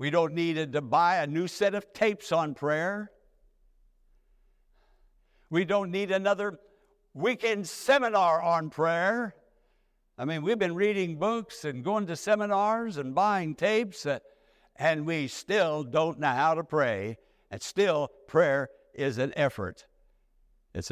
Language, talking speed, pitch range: English, 140 wpm, 110-165 Hz